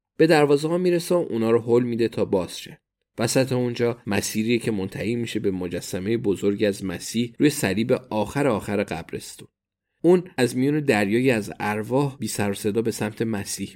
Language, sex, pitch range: Persian, male, 105-125 Hz